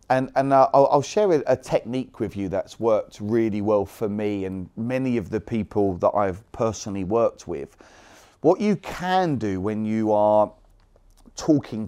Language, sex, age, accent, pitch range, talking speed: English, male, 30-49, British, 105-130 Hz, 170 wpm